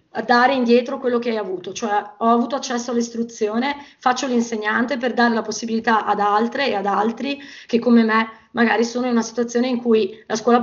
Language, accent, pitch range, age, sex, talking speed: Italian, native, 210-245 Hz, 20-39, female, 190 wpm